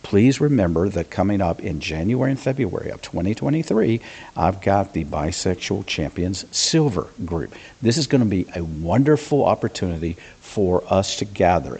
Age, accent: 50-69, American